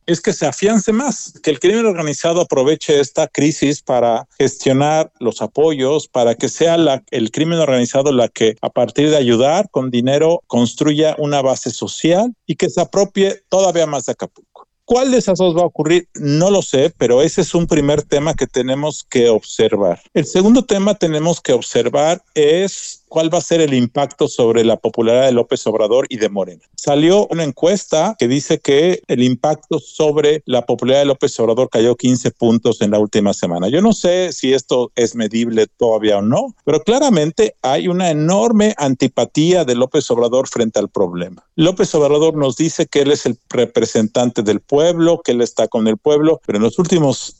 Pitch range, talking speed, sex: 125-170 Hz, 190 wpm, male